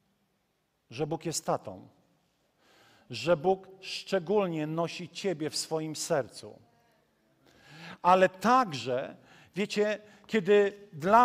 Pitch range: 170-215 Hz